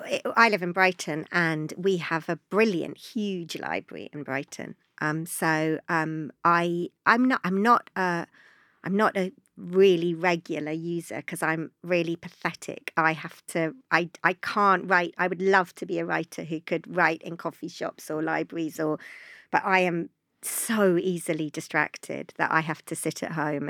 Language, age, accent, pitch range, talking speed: English, 50-69, British, 160-190 Hz, 170 wpm